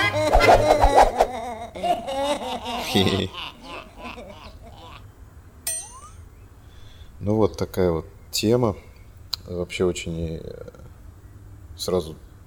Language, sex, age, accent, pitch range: Russian, male, 20-39, native, 85-100 Hz